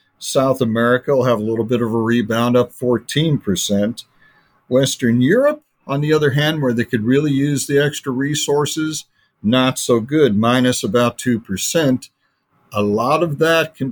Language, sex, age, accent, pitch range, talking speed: English, male, 50-69, American, 115-140 Hz, 170 wpm